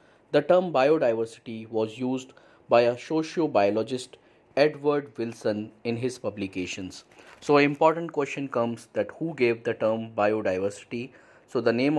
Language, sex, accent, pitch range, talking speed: English, male, Indian, 110-145 Hz, 135 wpm